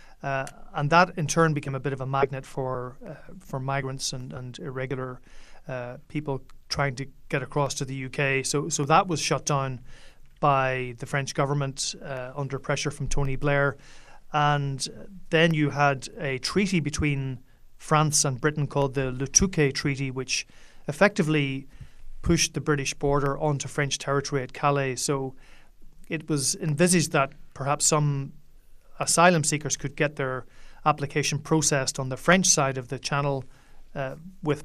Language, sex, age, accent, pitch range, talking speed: English, male, 30-49, Irish, 135-150 Hz, 160 wpm